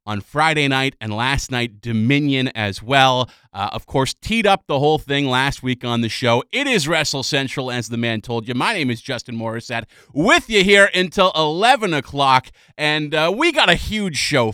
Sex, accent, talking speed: male, American, 200 wpm